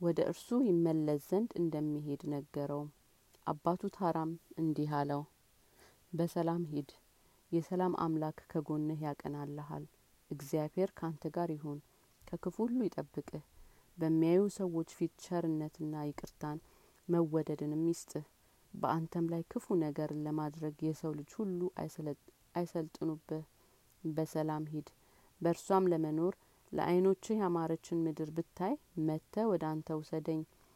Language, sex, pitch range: Amharic, female, 155-180 Hz